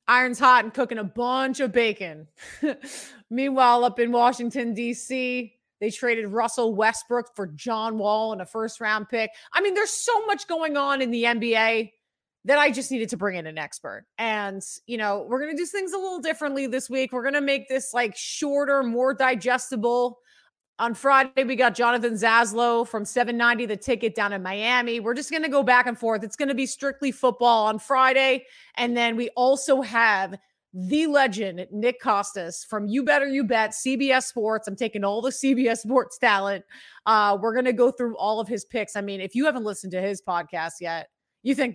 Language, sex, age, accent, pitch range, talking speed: English, female, 30-49, American, 220-270 Hz, 200 wpm